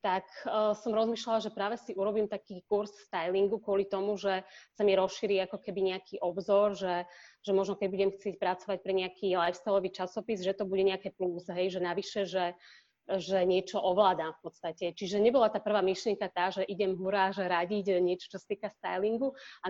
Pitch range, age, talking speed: 185-210 Hz, 30-49, 185 wpm